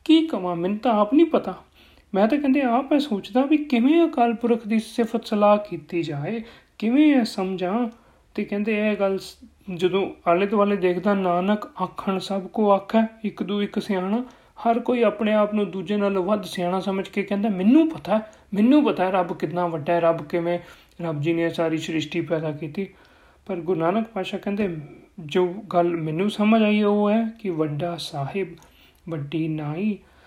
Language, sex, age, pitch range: Punjabi, male, 40-59, 170-225 Hz